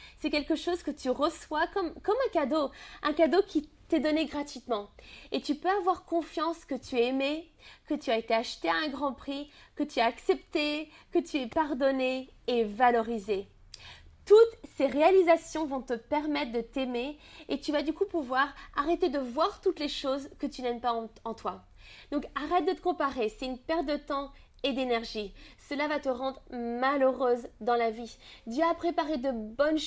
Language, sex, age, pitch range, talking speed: French, female, 20-39, 245-315 Hz, 195 wpm